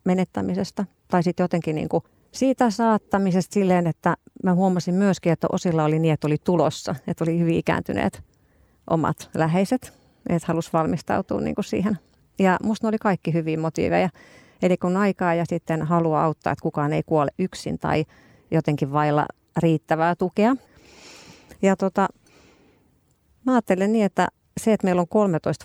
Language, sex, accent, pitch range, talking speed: Finnish, female, native, 165-200 Hz, 150 wpm